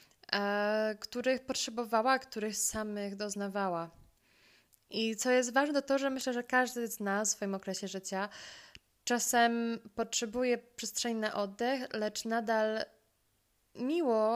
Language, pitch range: Polish, 195-235 Hz